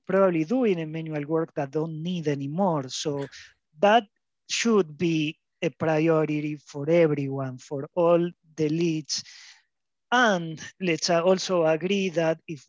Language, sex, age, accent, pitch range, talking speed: English, male, 30-49, Argentinian, 155-200 Hz, 130 wpm